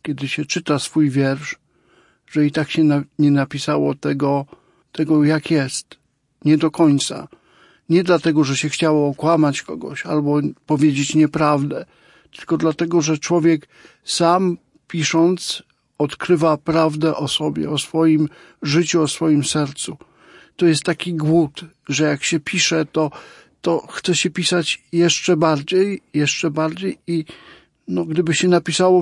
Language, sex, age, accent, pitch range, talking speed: Polish, male, 50-69, native, 150-175 Hz, 140 wpm